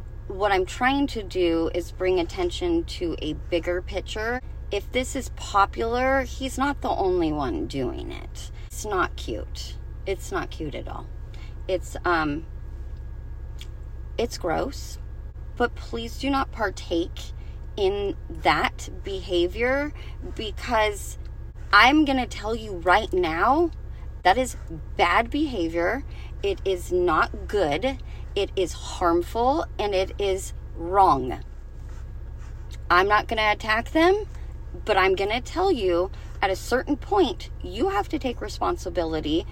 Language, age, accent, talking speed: English, 30-49, American, 130 wpm